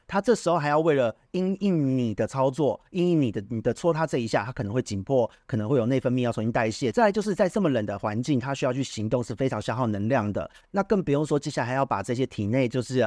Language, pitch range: Chinese, 115-150 Hz